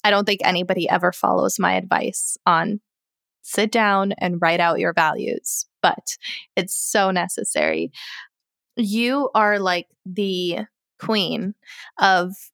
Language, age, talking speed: English, 20-39, 125 wpm